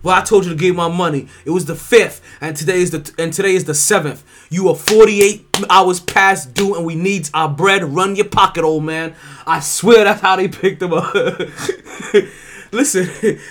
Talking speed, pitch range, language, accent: 205 wpm, 145-190 Hz, English, American